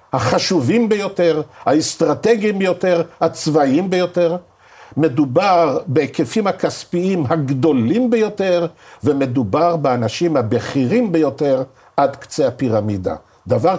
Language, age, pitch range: Hebrew, 50-69, 120-175 Hz